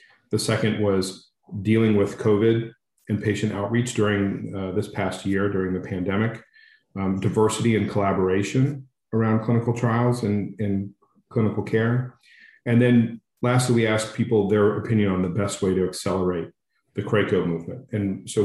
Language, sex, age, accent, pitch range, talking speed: English, male, 40-59, American, 95-115 Hz, 155 wpm